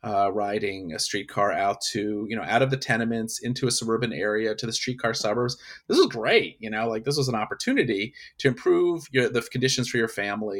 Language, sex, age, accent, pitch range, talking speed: English, male, 30-49, American, 120-150 Hz, 205 wpm